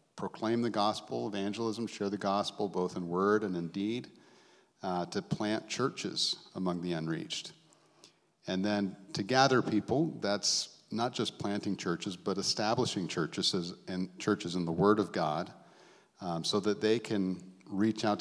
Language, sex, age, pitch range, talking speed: English, male, 50-69, 90-110 Hz, 155 wpm